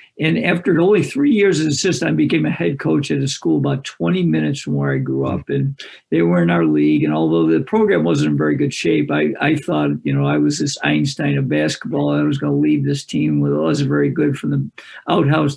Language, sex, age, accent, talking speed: English, male, 50-69, American, 245 wpm